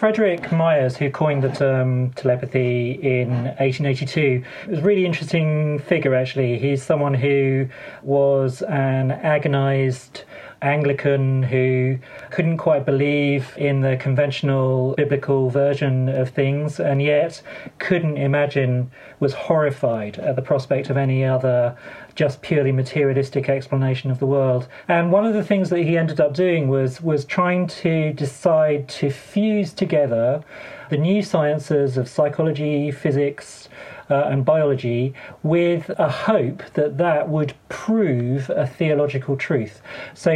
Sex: male